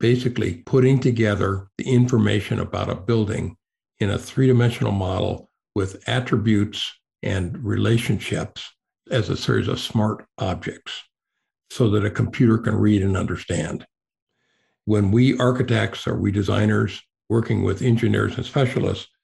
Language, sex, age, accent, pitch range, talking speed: English, male, 60-79, American, 105-125 Hz, 130 wpm